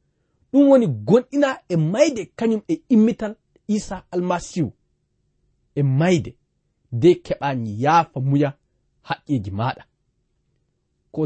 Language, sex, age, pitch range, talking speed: English, male, 40-59, 135-215 Hz, 105 wpm